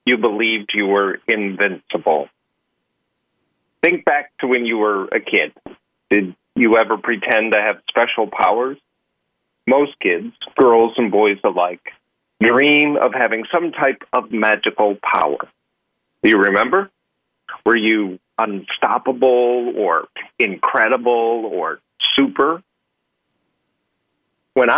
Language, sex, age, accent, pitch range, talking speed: English, male, 40-59, American, 95-135 Hz, 110 wpm